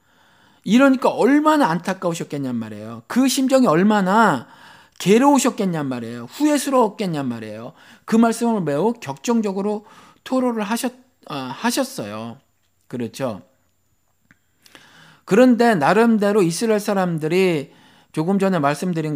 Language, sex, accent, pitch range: Korean, male, native, 135-220 Hz